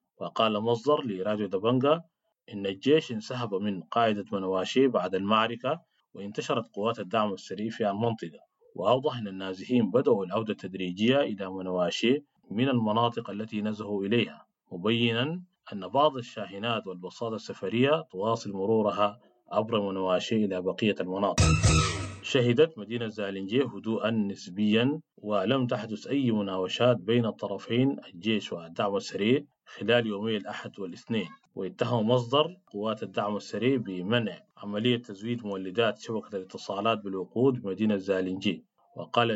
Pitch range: 100-120 Hz